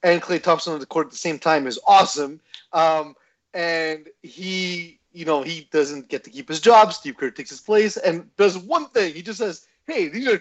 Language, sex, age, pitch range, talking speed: English, male, 30-49, 140-215 Hz, 225 wpm